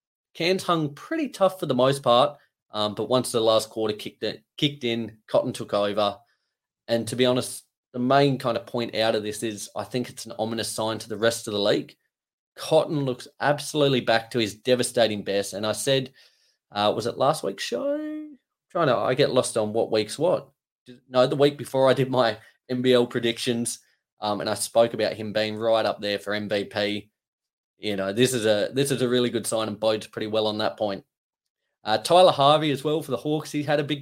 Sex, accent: male, Australian